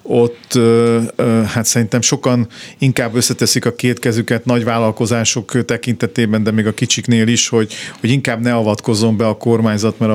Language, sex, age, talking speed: Hungarian, male, 50-69, 155 wpm